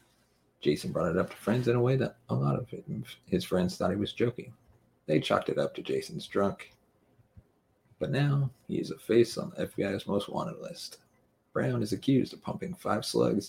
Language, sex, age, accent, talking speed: English, male, 40-59, American, 200 wpm